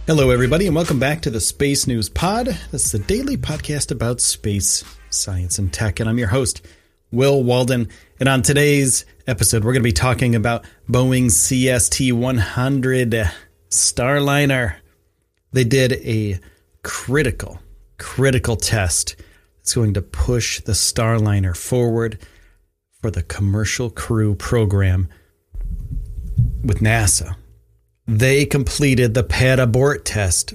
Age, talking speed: 30-49, 130 wpm